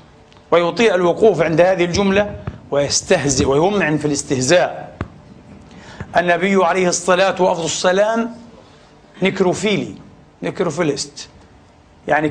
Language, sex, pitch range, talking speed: Arabic, male, 150-190 Hz, 85 wpm